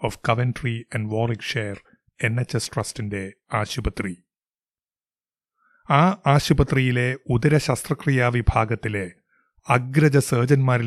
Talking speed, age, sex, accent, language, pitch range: 60 wpm, 30-49, male, native, Malayalam, 115-145 Hz